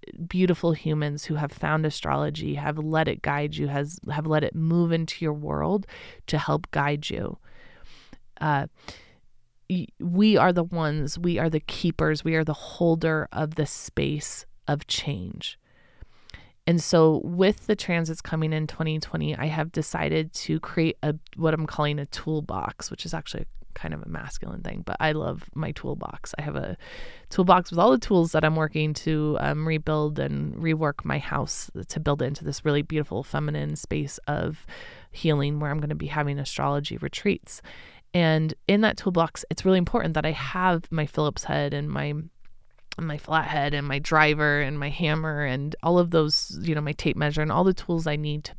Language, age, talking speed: English, 30-49, 185 wpm